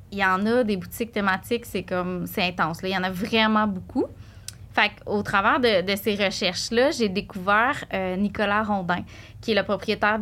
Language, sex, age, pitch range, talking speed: French, female, 20-39, 190-225 Hz, 195 wpm